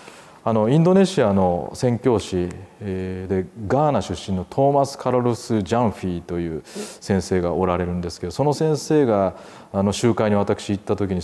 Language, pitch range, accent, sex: Japanese, 95-135 Hz, native, male